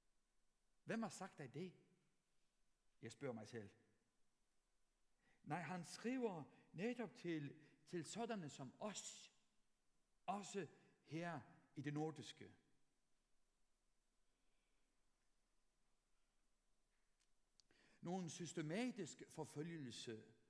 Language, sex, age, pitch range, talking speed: Danish, male, 60-79, 130-185 Hz, 75 wpm